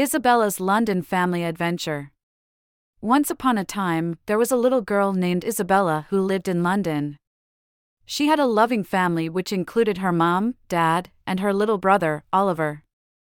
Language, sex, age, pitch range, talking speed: English, female, 30-49, 165-215 Hz, 155 wpm